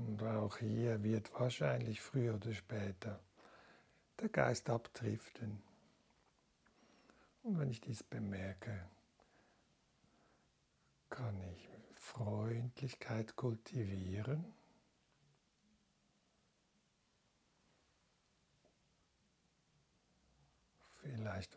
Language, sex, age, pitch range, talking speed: German, male, 60-79, 105-125 Hz, 60 wpm